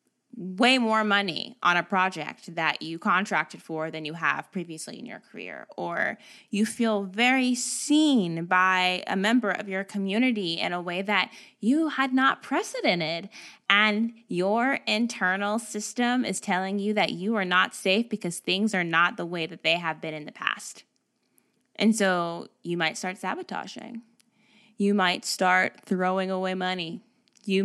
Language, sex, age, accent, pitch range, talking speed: English, female, 20-39, American, 180-225 Hz, 160 wpm